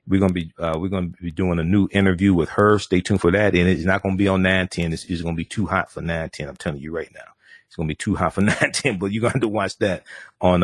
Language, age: English, 40-59